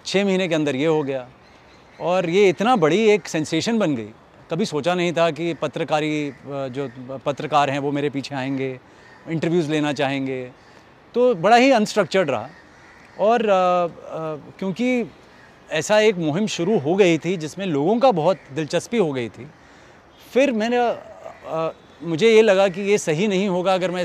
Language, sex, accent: Hindi, male, native